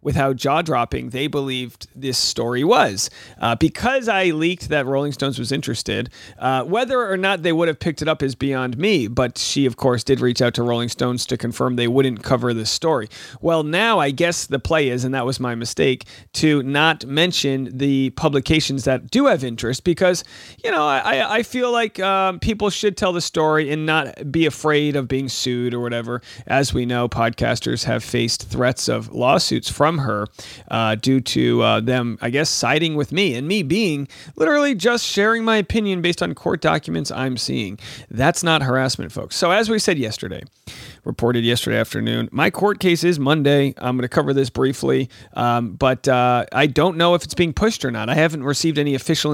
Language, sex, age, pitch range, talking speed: English, male, 40-59, 125-165 Hz, 200 wpm